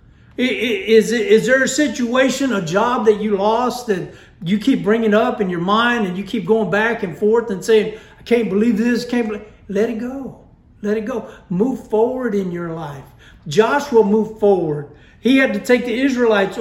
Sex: male